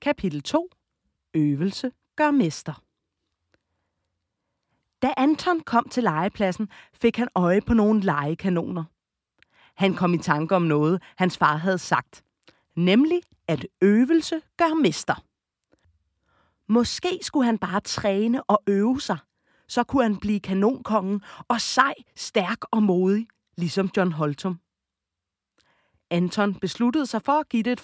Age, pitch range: 30-49, 155-220 Hz